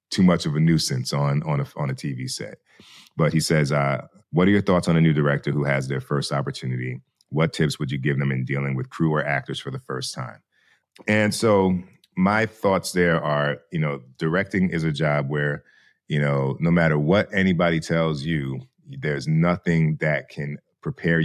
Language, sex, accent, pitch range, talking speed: English, male, American, 70-85 Hz, 200 wpm